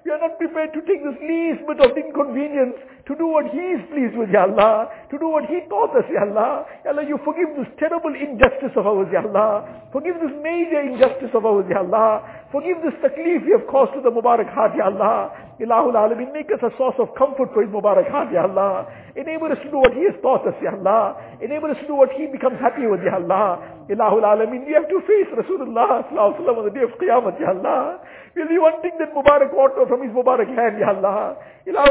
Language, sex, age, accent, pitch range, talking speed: English, male, 60-79, Indian, 250-325 Hz, 235 wpm